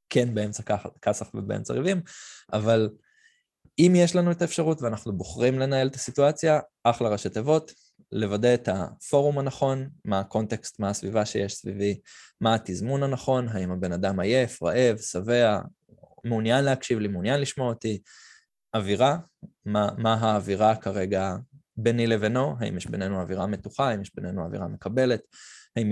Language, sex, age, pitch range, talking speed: Hebrew, male, 20-39, 100-140 Hz, 145 wpm